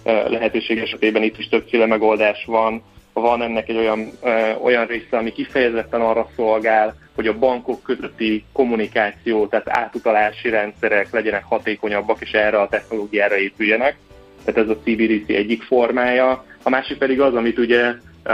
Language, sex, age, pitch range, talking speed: Hungarian, male, 30-49, 110-125 Hz, 145 wpm